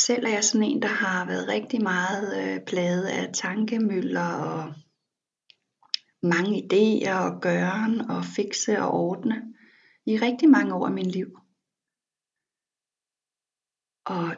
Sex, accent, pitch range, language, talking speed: female, native, 180-230 Hz, Danish, 130 wpm